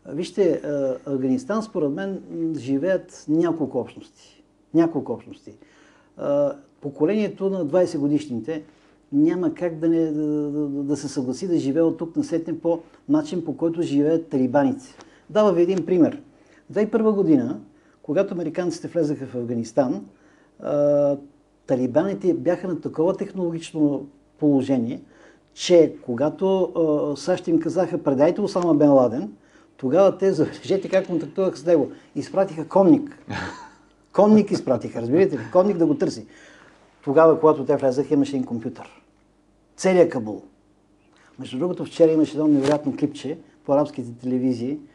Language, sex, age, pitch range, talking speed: Bulgarian, male, 50-69, 145-185 Hz, 130 wpm